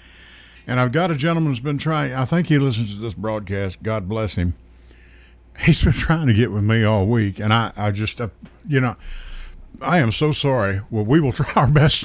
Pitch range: 90-125 Hz